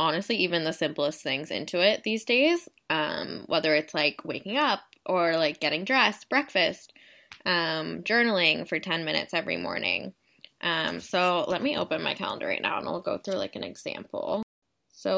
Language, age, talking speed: English, 10-29, 175 wpm